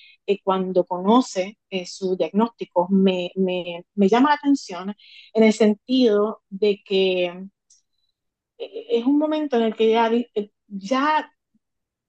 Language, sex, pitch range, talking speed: Spanish, female, 185-245 Hz, 120 wpm